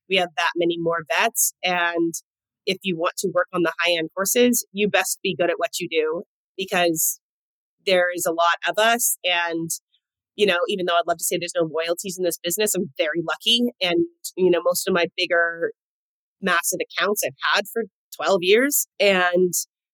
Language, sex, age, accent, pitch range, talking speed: English, female, 30-49, American, 170-195 Hz, 195 wpm